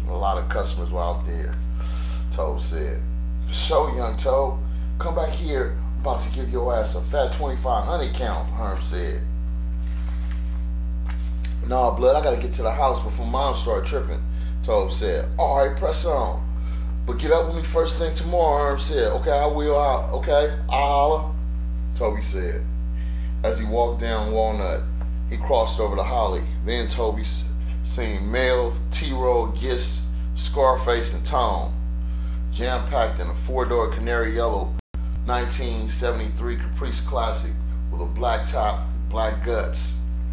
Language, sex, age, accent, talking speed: English, male, 30-49, American, 150 wpm